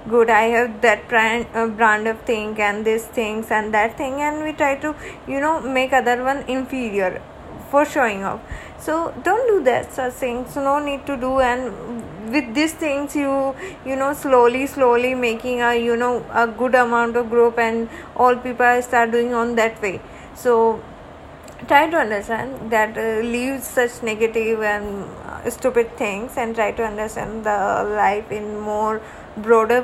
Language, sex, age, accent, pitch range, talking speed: Hindi, female, 20-39, native, 225-255 Hz, 170 wpm